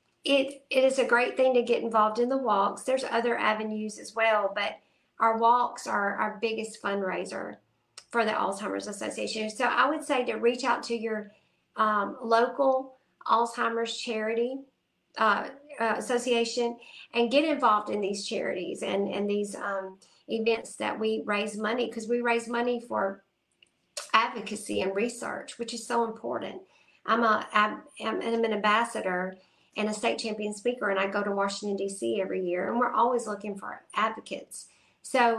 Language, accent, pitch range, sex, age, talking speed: English, American, 200-235 Hz, female, 50-69, 165 wpm